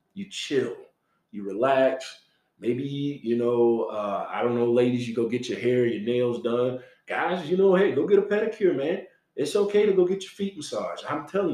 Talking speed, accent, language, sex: 205 wpm, American, English, male